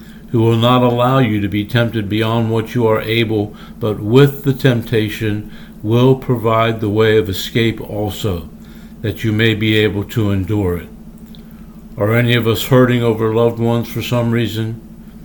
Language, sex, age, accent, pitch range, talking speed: English, male, 60-79, American, 110-130 Hz, 170 wpm